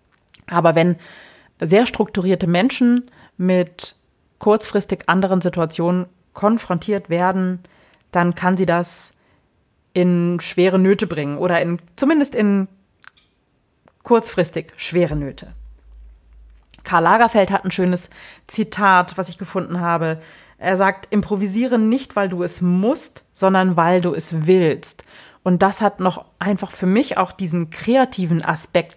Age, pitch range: 30-49, 170-200 Hz